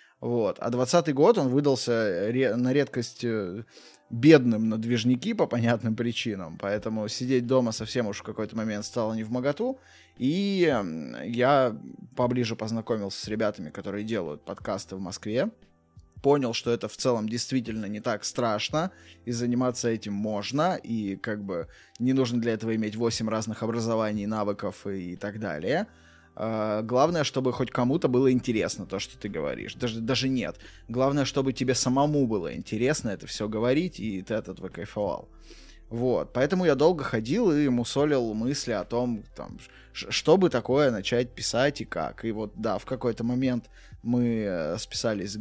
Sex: male